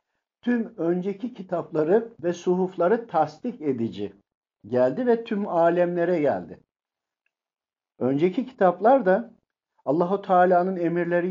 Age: 50-69